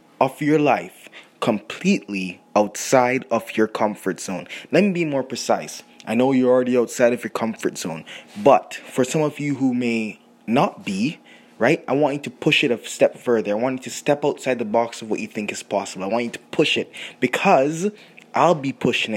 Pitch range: 110-130 Hz